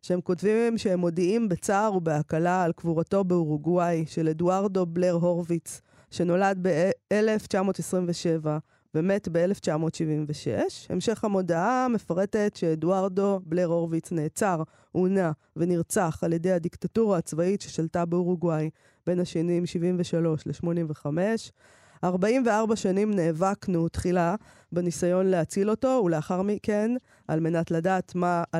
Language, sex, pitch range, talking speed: Hebrew, female, 165-195 Hz, 105 wpm